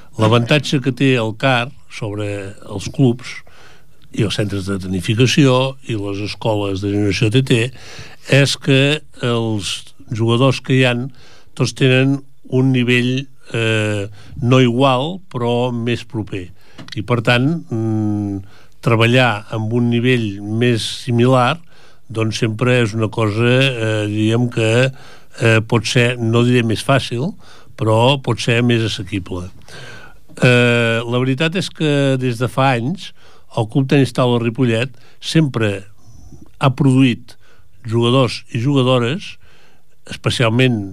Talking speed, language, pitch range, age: 125 wpm, Italian, 110-135 Hz, 60-79